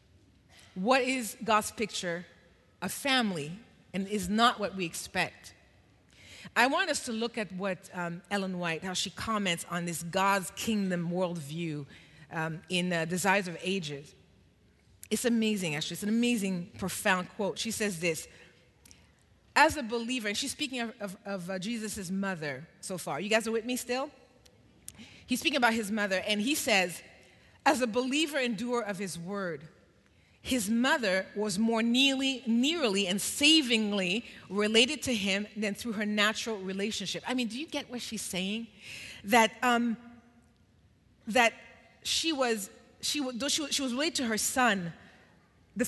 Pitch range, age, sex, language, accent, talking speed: 185-245 Hz, 30-49, female, English, American, 155 wpm